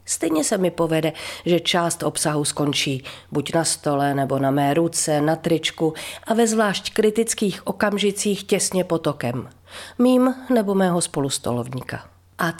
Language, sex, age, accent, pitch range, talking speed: Czech, female, 40-59, native, 150-200 Hz, 140 wpm